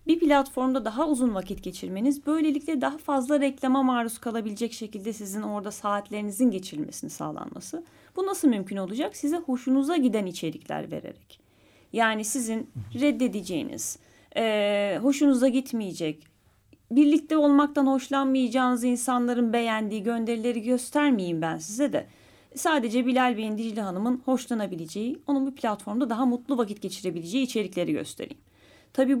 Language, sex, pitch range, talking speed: Turkish, female, 200-275 Hz, 120 wpm